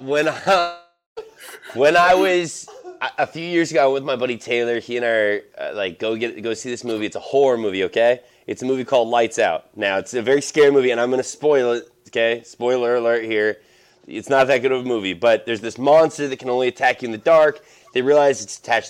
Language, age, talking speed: English, 20-39, 230 wpm